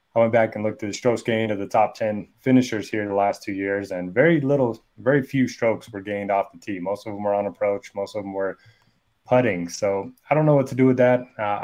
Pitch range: 100-120 Hz